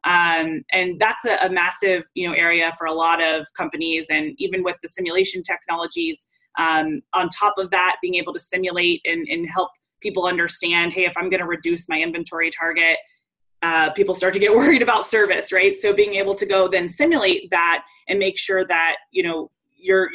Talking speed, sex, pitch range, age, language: 200 wpm, female, 170-195 Hz, 20-39, English